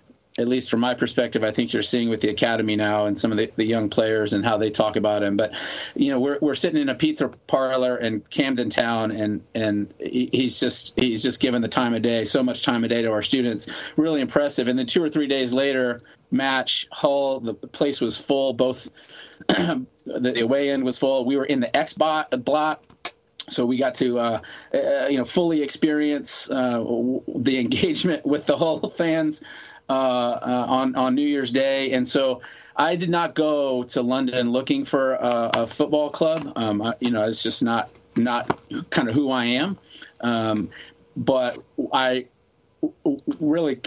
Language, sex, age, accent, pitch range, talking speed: English, male, 30-49, American, 120-145 Hz, 195 wpm